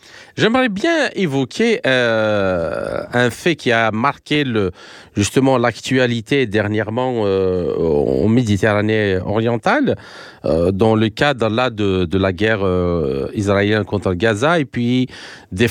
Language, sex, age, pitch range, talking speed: French, male, 40-59, 110-175 Hz, 125 wpm